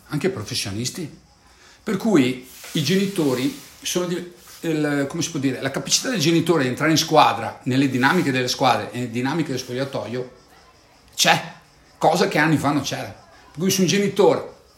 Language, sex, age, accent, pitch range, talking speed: Italian, male, 50-69, native, 120-160 Hz, 170 wpm